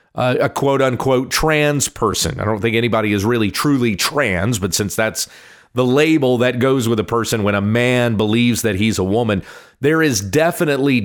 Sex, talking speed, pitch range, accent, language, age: male, 185 wpm, 110-140 Hz, American, English, 40-59